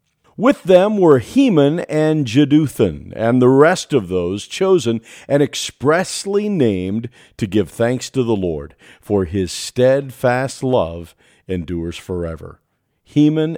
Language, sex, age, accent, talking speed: English, male, 50-69, American, 125 wpm